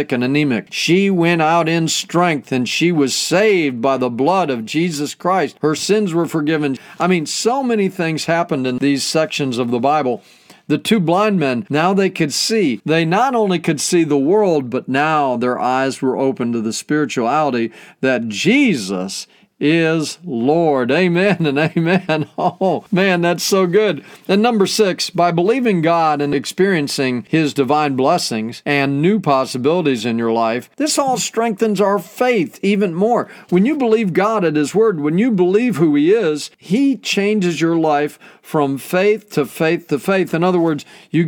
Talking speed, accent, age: 175 wpm, American, 40-59